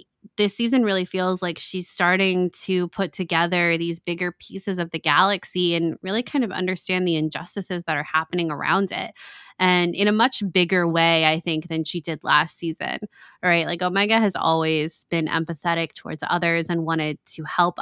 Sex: female